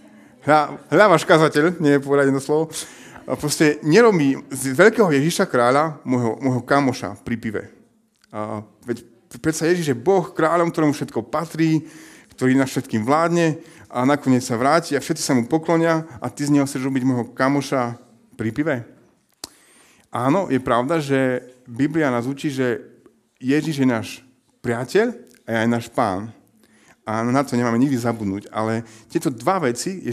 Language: Slovak